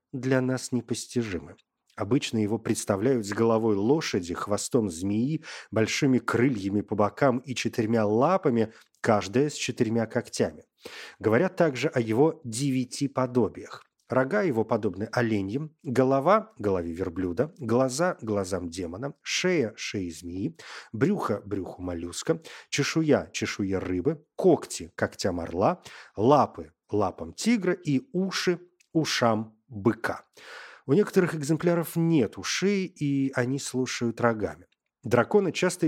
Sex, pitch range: male, 110-150 Hz